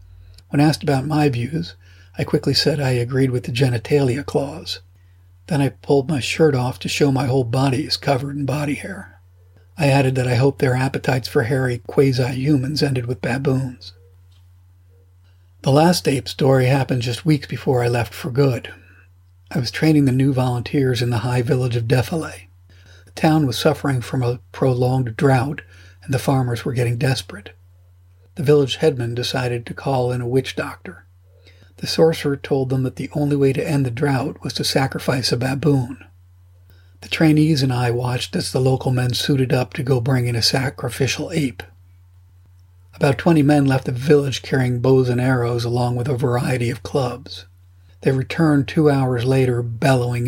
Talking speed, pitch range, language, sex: 175 wpm, 95-140 Hz, English, male